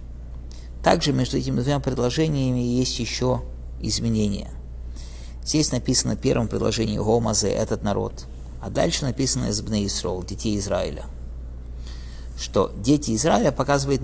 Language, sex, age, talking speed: English, male, 50-69, 115 wpm